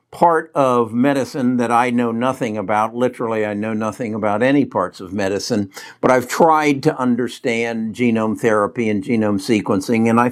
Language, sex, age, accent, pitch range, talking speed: English, male, 60-79, American, 115-135 Hz, 170 wpm